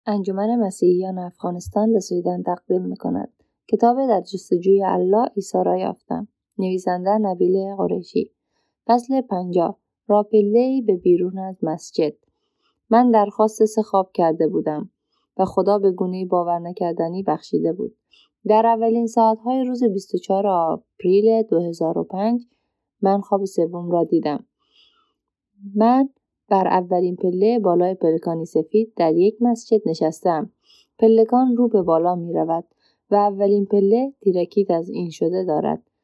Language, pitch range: Persian, 180-225 Hz